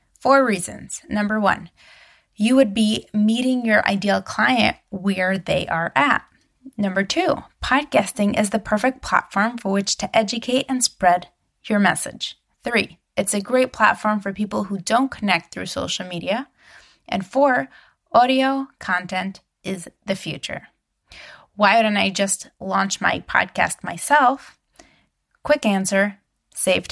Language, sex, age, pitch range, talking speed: English, female, 20-39, 195-235 Hz, 140 wpm